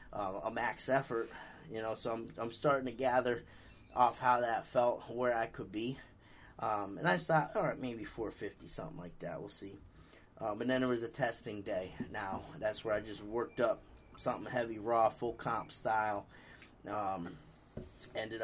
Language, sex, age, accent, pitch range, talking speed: English, male, 30-49, American, 100-120 Hz, 180 wpm